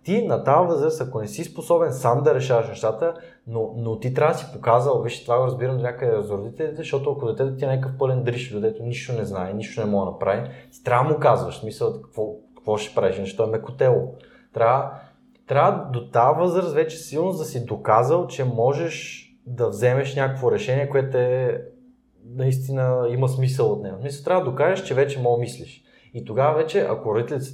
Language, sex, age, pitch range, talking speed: Bulgarian, male, 20-39, 120-170 Hz, 205 wpm